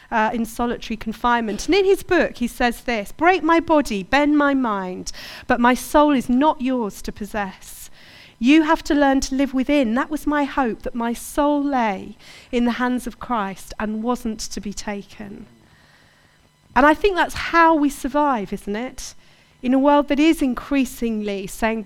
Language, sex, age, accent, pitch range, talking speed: English, female, 40-59, British, 225-275 Hz, 180 wpm